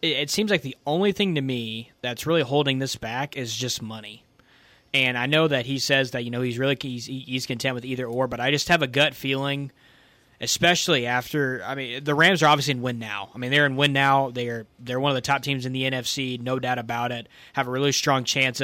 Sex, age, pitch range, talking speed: male, 20-39, 125-140 Hz, 250 wpm